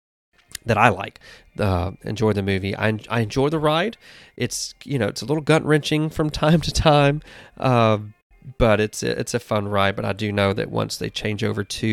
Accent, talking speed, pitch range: American, 215 wpm, 100-125 Hz